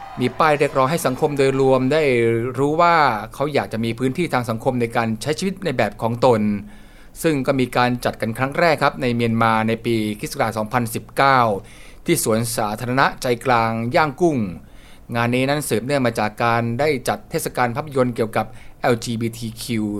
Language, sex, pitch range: Thai, male, 115-145 Hz